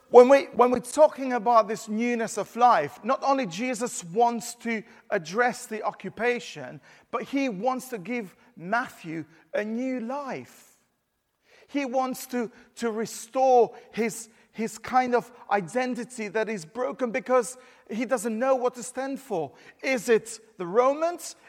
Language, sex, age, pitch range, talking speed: English, male, 40-59, 210-260 Hz, 145 wpm